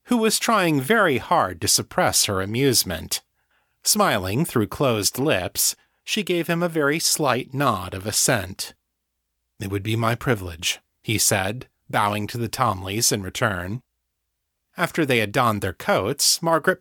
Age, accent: 40-59, American